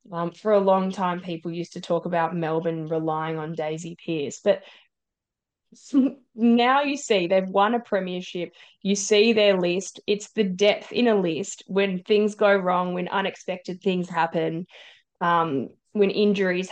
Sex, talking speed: female, 160 wpm